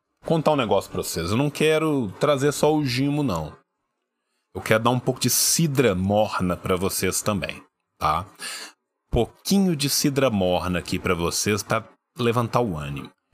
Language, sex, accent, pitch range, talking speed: Portuguese, male, Brazilian, 95-140 Hz, 160 wpm